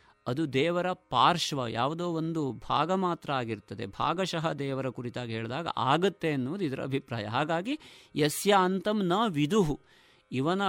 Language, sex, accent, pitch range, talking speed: Kannada, male, native, 115-160 Hz, 125 wpm